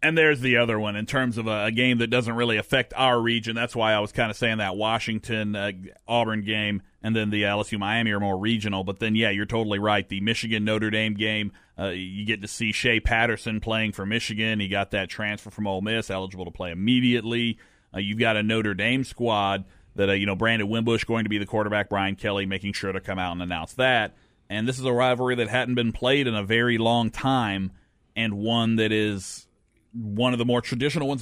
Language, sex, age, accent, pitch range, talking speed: English, male, 30-49, American, 105-130 Hz, 230 wpm